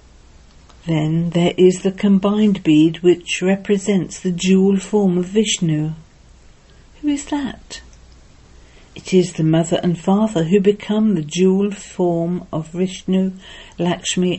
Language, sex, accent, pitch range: English, female, British, 155-195 Hz